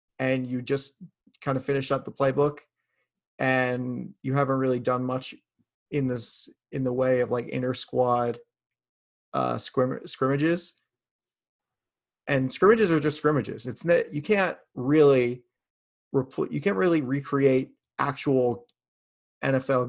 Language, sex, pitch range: English, male, 125-145 Hz